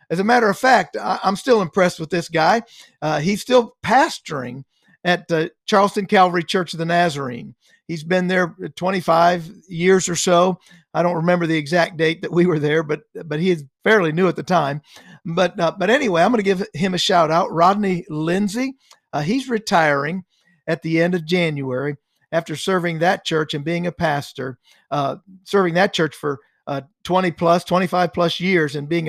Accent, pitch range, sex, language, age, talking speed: American, 155-190 Hz, male, English, 50-69, 190 wpm